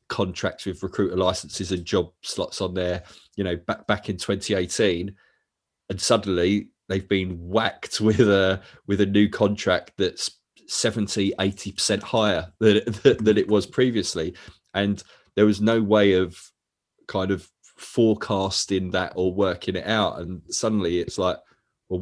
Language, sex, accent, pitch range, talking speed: English, male, British, 90-105 Hz, 150 wpm